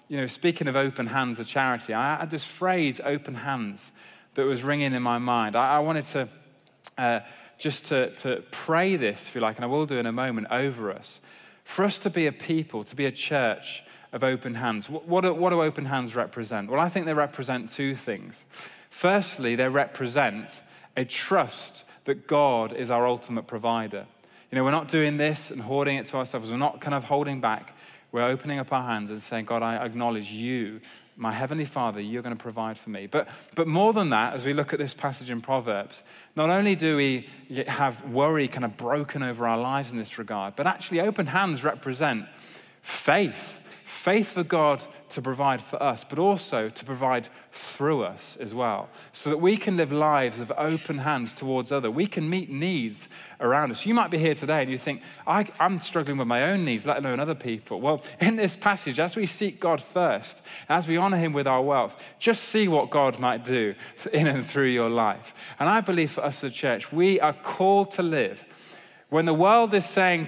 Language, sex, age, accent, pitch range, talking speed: English, male, 20-39, British, 125-160 Hz, 210 wpm